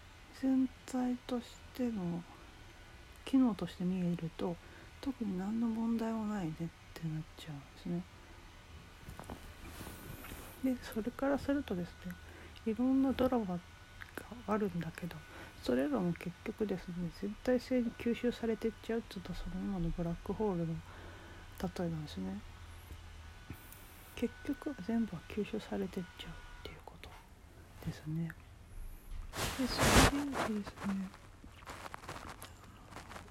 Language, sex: Japanese, female